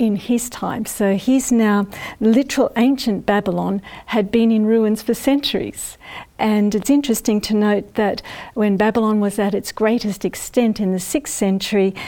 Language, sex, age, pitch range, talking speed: English, female, 50-69, 195-235 Hz, 160 wpm